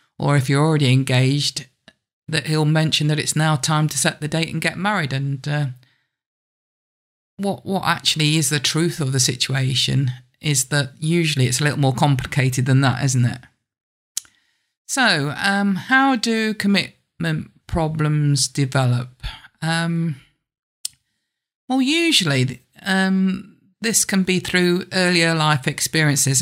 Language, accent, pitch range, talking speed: English, British, 135-170 Hz, 135 wpm